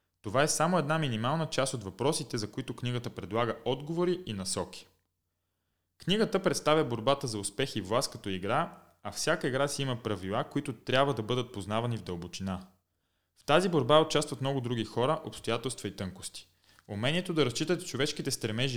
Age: 20-39